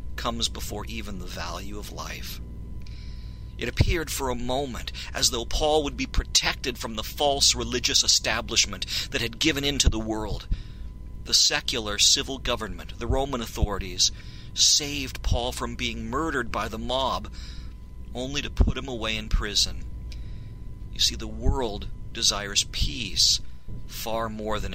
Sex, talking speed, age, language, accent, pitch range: male, 150 wpm, 50-69, English, American, 85-115 Hz